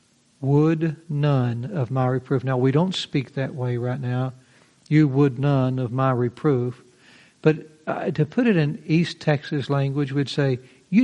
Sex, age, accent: male, 60-79, American